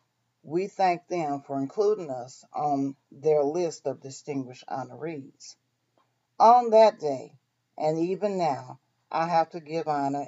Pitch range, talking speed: 150-210 Hz, 135 wpm